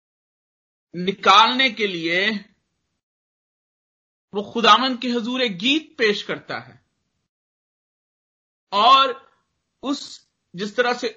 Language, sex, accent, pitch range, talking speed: Hindi, male, native, 180-225 Hz, 85 wpm